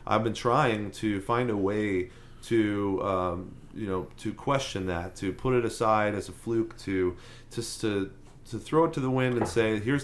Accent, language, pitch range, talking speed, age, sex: American, English, 95-120 Hz, 195 wpm, 30-49, male